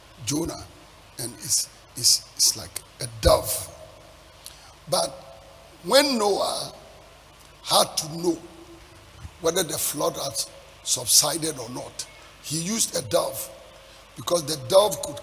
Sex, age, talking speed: male, 50-69, 115 wpm